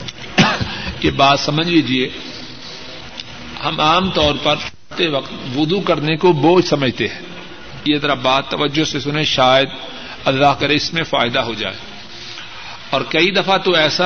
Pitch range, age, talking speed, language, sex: 140-170 Hz, 50-69, 145 wpm, Urdu, male